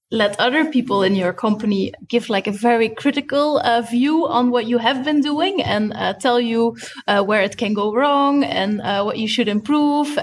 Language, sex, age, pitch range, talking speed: English, female, 20-39, 220-275 Hz, 205 wpm